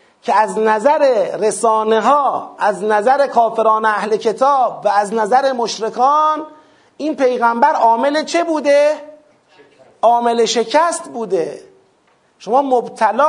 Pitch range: 220-300 Hz